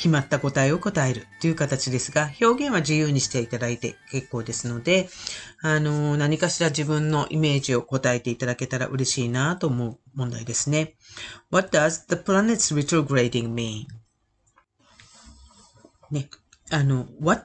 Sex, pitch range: female, 120-160 Hz